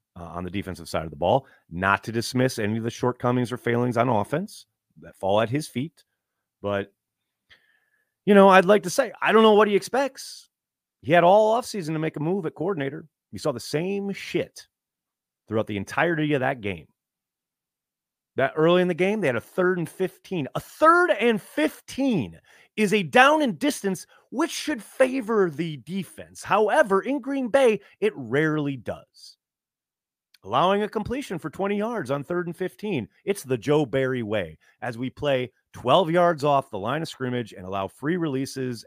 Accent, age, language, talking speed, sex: American, 30-49, English, 185 wpm, male